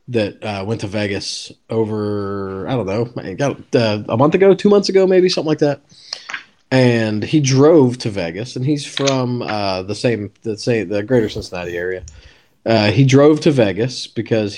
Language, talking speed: English, 175 wpm